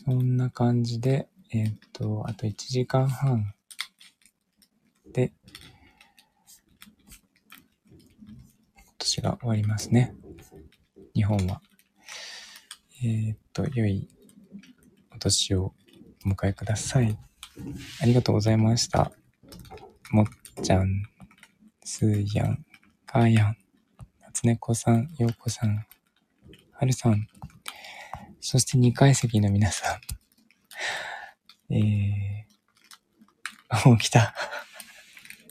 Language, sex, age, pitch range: Japanese, male, 20-39, 105-130 Hz